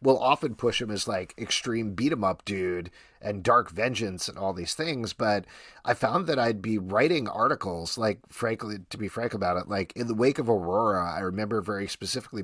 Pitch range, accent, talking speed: 95-130 Hz, American, 200 wpm